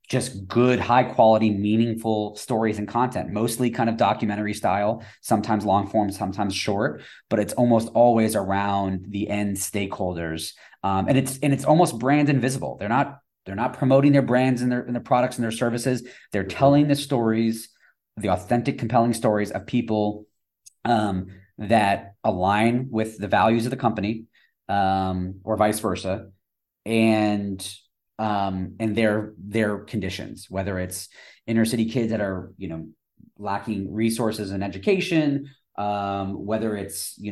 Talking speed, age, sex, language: 155 wpm, 20-39, male, English